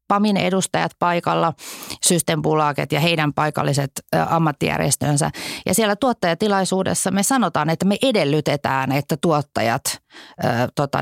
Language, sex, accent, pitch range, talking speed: Finnish, female, native, 140-175 Hz, 105 wpm